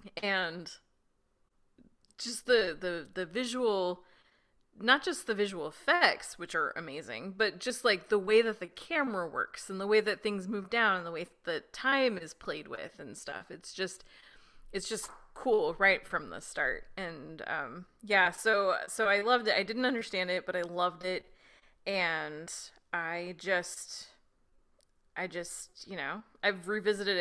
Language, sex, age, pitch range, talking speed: English, female, 20-39, 180-225 Hz, 165 wpm